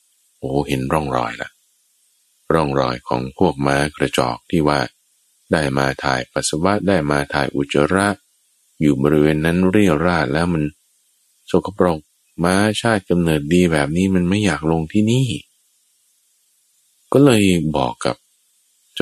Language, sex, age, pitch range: Thai, male, 20-39, 70-100 Hz